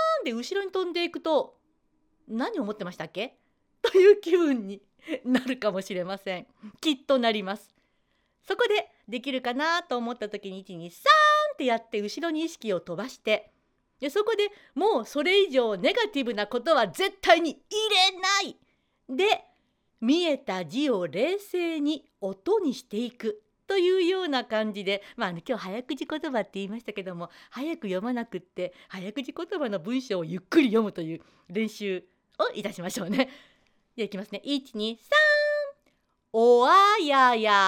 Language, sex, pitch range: Japanese, female, 205-310 Hz